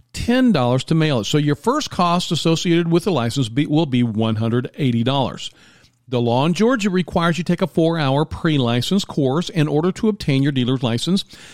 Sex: male